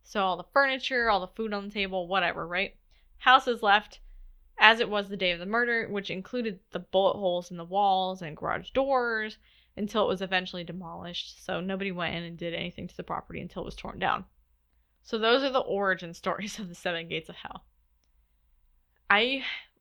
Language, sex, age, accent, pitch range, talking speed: English, female, 10-29, American, 165-205 Hz, 205 wpm